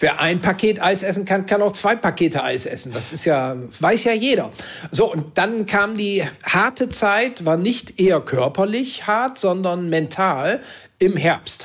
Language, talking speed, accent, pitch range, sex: German, 165 wpm, German, 150-205 Hz, male